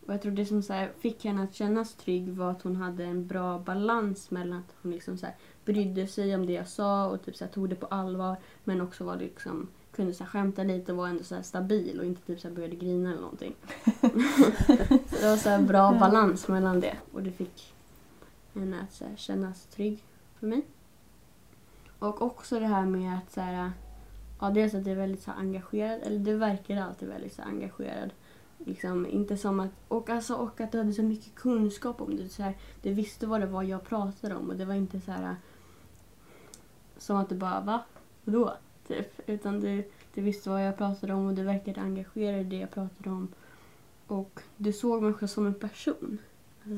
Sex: female